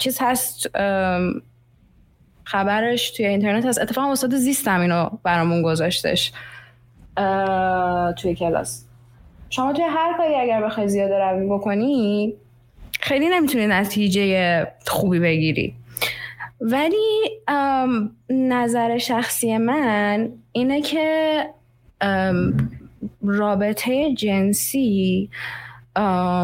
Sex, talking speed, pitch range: female, 85 wpm, 180-240 Hz